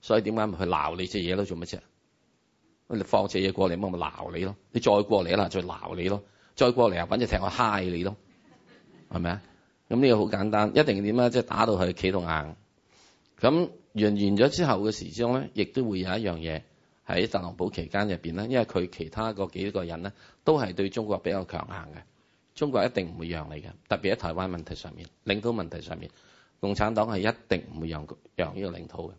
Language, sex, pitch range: Chinese, male, 90-110 Hz